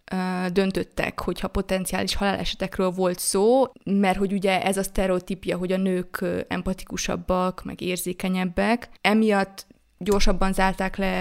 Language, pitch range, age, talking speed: Hungarian, 185-215 Hz, 20-39, 120 wpm